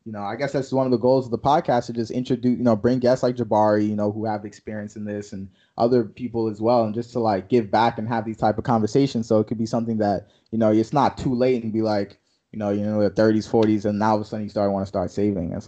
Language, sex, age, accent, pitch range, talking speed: English, male, 20-39, American, 110-140 Hz, 310 wpm